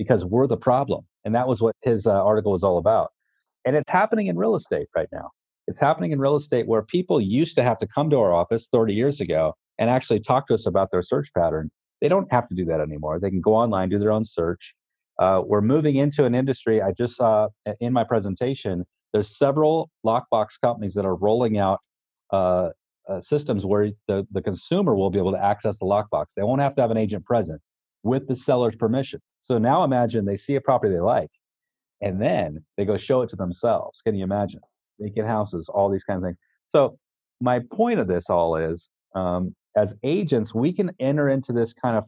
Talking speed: 220 wpm